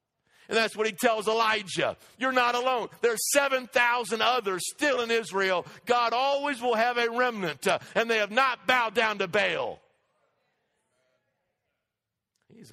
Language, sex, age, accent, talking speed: English, male, 60-79, American, 150 wpm